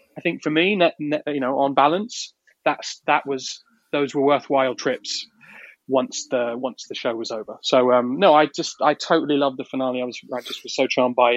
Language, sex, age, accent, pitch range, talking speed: English, male, 20-39, British, 130-160 Hz, 220 wpm